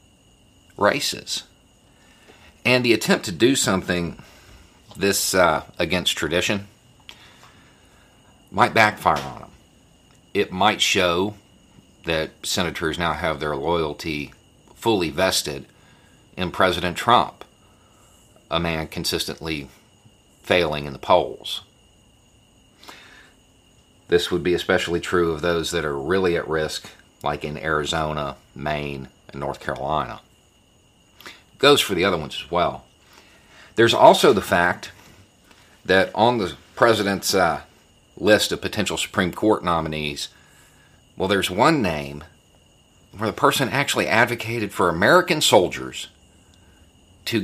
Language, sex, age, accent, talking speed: English, male, 40-59, American, 115 wpm